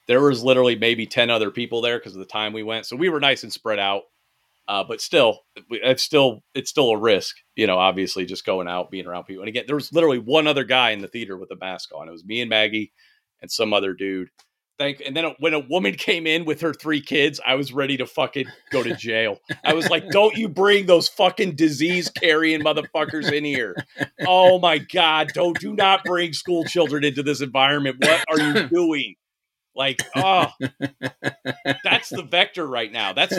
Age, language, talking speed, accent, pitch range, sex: 40-59, English, 215 wpm, American, 120-170 Hz, male